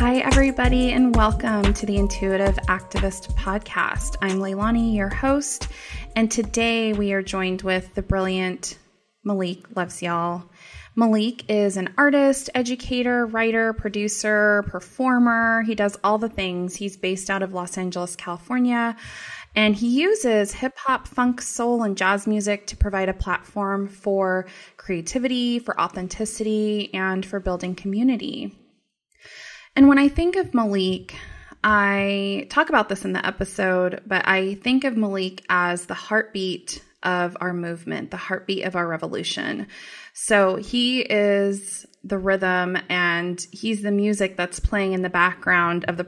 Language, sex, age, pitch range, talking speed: English, female, 20-39, 185-230 Hz, 145 wpm